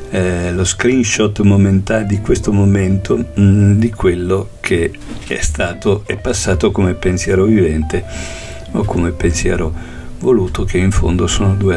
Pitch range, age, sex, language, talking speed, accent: 80-100 Hz, 50-69, male, Italian, 140 wpm, native